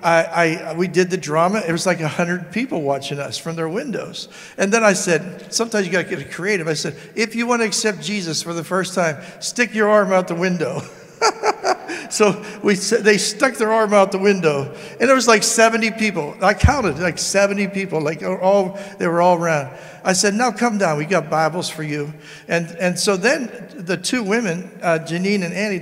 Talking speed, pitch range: 210 wpm, 170-215 Hz